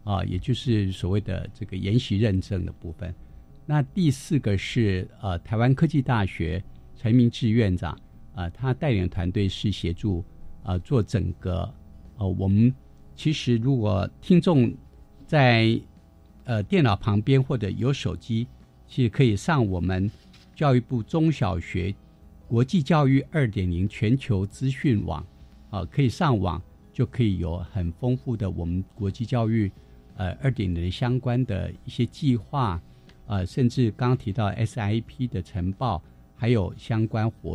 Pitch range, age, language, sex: 95-125 Hz, 50-69, Chinese, male